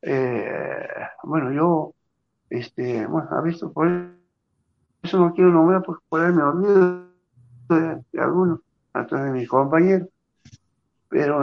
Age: 60-79